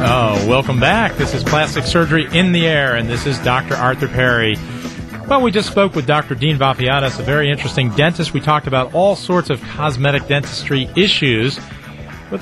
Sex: male